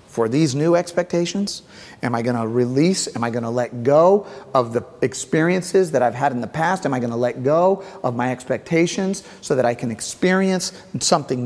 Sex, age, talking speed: male, 40-59, 205 wpm